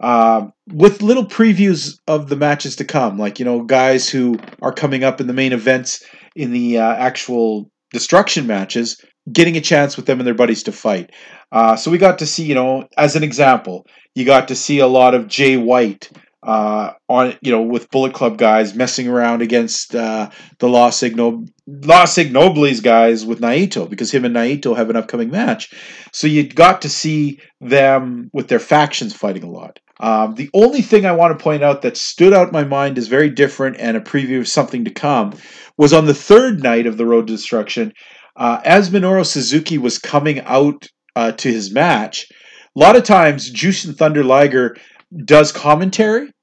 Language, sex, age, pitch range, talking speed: English, male, 40-59, 120-155 Hz, 195 wpm